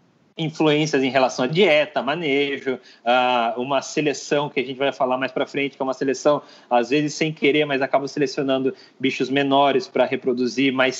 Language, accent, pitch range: Portuguese, Brazilian, 130-155 Hz